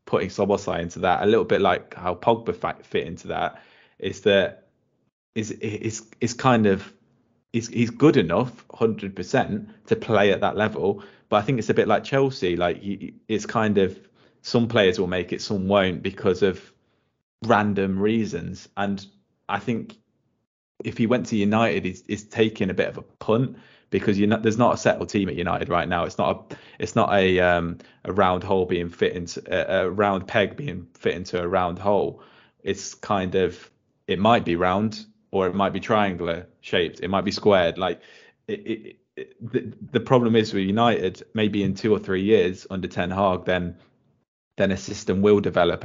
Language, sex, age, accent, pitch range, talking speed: English, male, 20-39, British, 90-115 Hz, 195 wpm